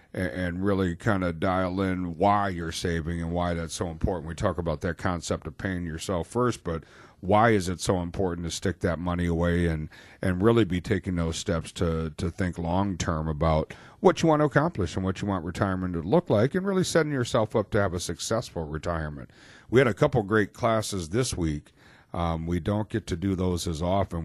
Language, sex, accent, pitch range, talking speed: English, male, American, 85-115 Hz, 215 wpm